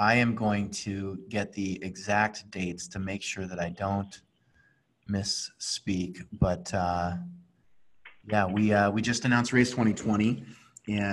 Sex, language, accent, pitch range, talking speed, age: male, English, American, 105-125 Hz, 140 wpm, 30-49